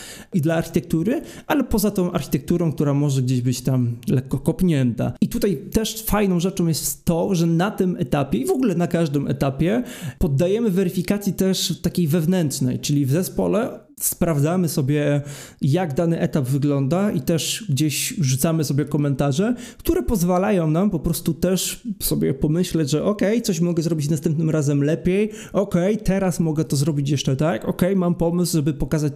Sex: male